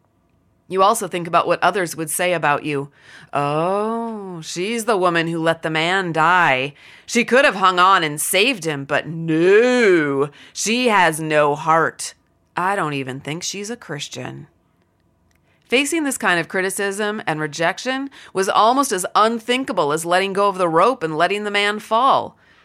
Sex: female